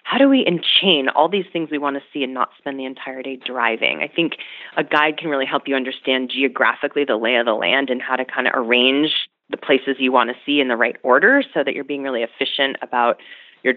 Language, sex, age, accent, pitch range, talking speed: English, female, 30-49, American, 130-175 Hz, 250 wpm